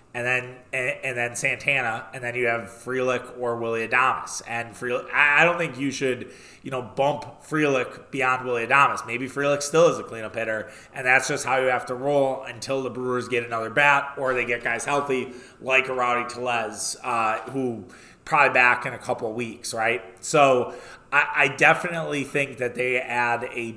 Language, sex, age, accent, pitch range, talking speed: English, male, 20-39, American, 120-140 Hz, 195 wpm